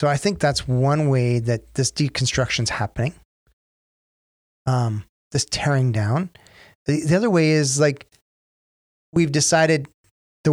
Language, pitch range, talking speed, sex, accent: English, 120-160 Hz, 130 wpm, male, American